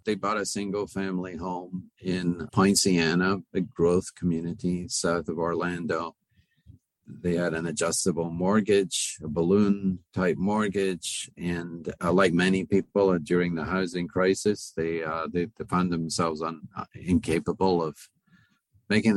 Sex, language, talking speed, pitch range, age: male, English, 130 wpm, 85-100 Hz, 50-69